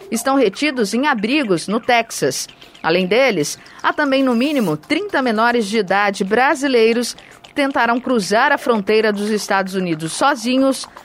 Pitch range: 205-270 Hz